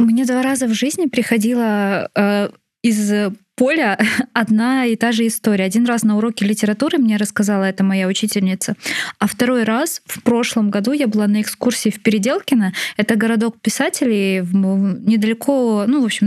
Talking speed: 155 wpm